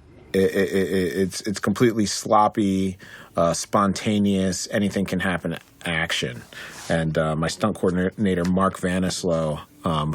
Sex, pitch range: male, 85-110 Hz